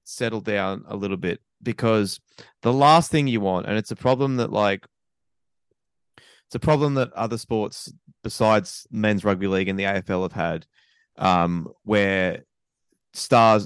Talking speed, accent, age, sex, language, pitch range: 155 wpm, Australian, 20-39, male, English, 100-125 Hz